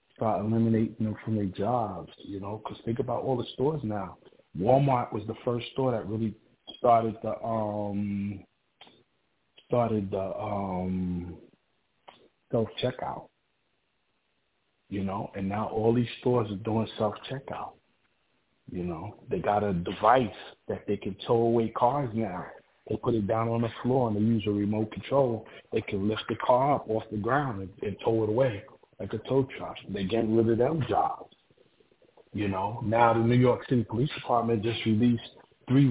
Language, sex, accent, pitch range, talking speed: English, male, American, 105-125 Hz, 170 wpm